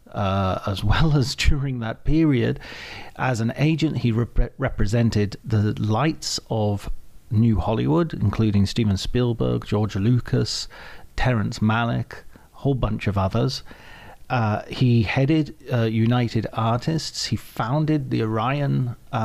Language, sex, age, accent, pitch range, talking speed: English, male, 40-59, British, 105-135 Hz, 125 wpm